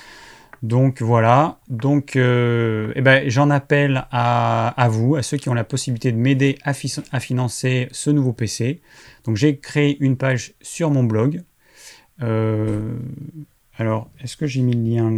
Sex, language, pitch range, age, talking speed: male, French, 115-135 Hz, 30-49, 165 wpm